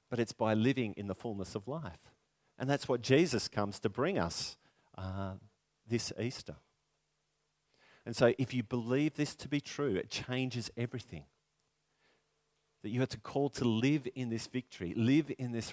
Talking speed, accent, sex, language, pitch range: 170 wpm, Australian, male, English, 100-130 Hz